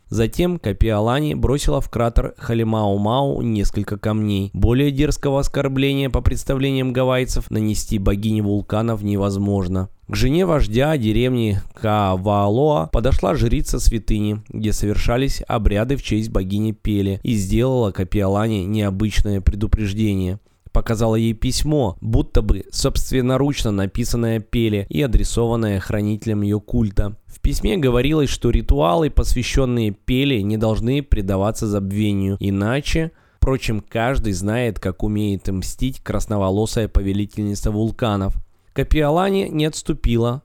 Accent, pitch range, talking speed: native, 100-130 Hz, 110 wpm